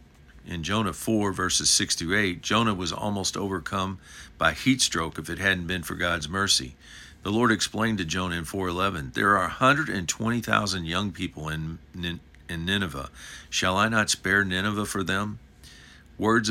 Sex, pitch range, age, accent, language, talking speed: male, 80-100 Hz, 50-69, American, English, 180 wpm